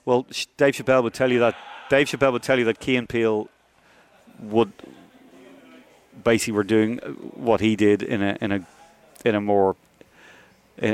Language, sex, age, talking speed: English, male, 40-59, 170 wpm